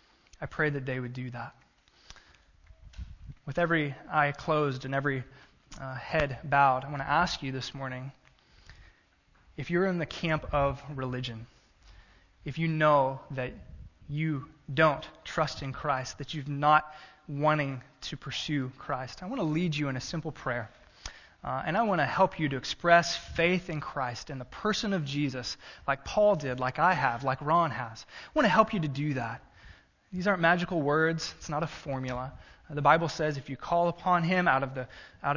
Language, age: English, 20-39